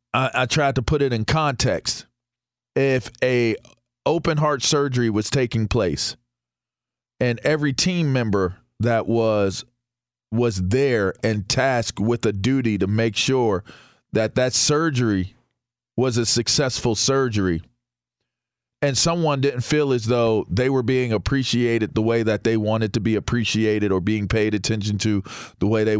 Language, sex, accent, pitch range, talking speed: English, male, American, 110-135 Hz, 145 wpm